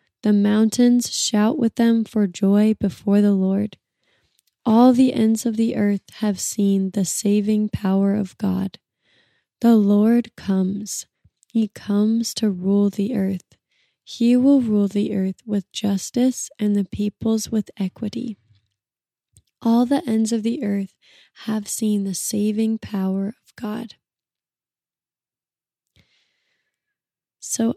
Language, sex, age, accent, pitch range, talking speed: English, female, 20-39, American, 200-230 Hz, 125 wpm